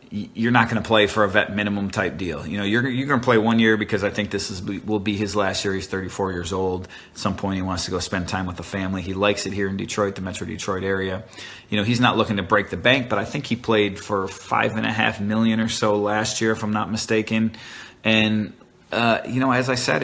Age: 30-49